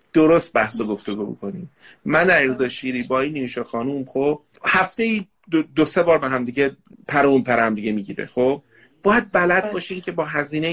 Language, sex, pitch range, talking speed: Persian, male, 135-210 Hz, 175 wpm